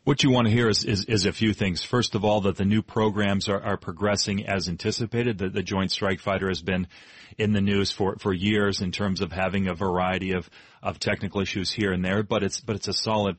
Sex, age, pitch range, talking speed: male, 30-49, 95-105 Hz, 245 wpm